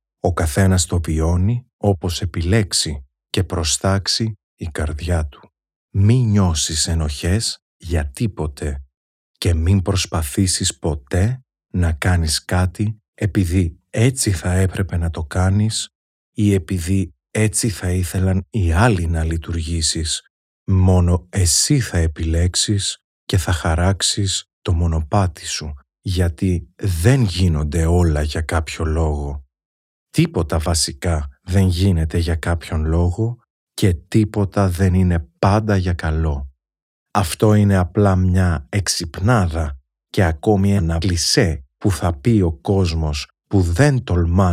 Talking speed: 115 wpm